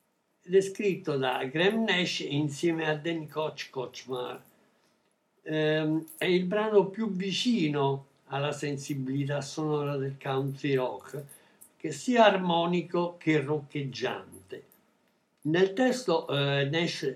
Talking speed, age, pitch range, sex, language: 105 wpm, 60-79, 140-190 Hz, male, Italian